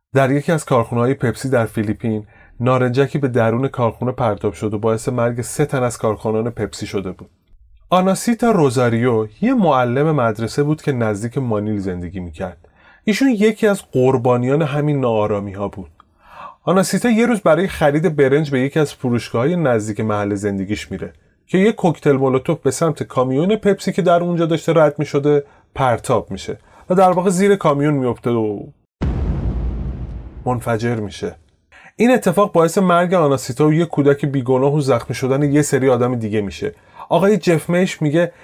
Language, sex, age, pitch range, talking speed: Persian, male, 30-49, 110-155 Hz, 155 wpm